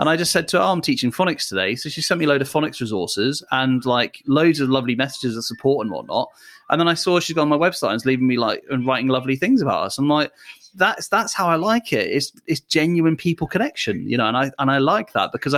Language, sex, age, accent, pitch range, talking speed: English, male, 30-49, British, 125-160 Hz, 275 wpm